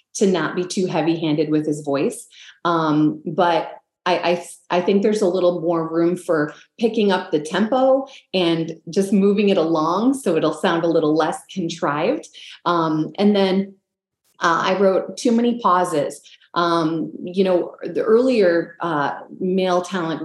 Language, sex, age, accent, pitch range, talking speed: English, female, 30-49, American, 165-200 Hz, 160 wpm